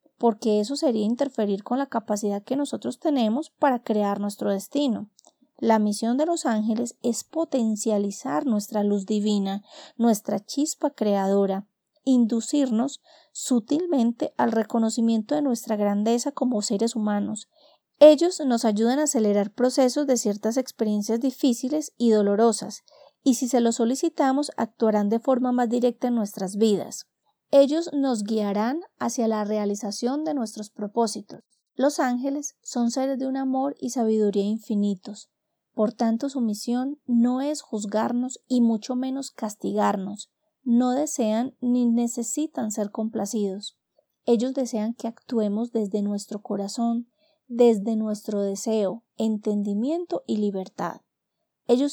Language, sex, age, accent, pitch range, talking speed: Spanish, female, 30-49, Colombian, 210-265 Hz, 130 wpm